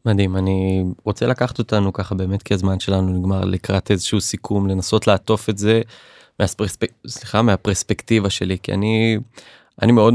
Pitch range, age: 95-115 Hz, 20-39